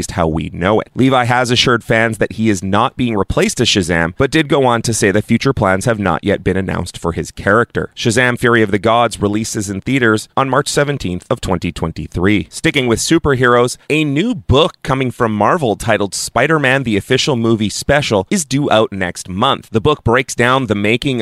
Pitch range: 100-120 Hz